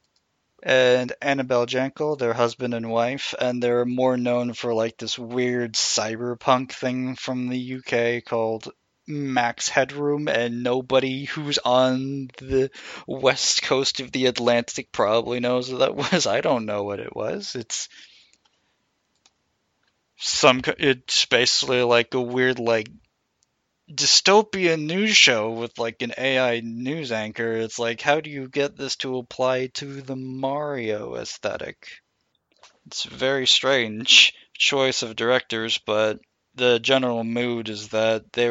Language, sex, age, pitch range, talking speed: English, male, 20-39, 115-130 Hz, 135 wpm